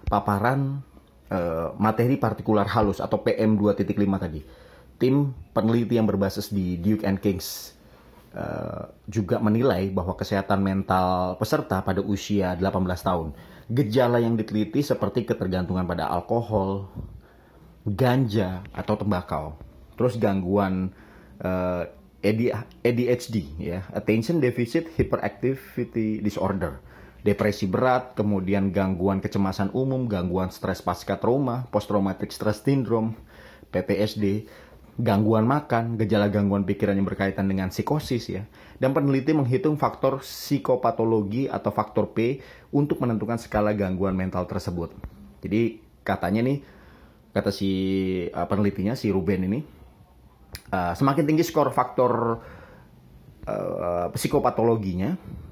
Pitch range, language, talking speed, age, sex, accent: 95-120 Hz, Indonesian, 110 wpm, 30-49, male, native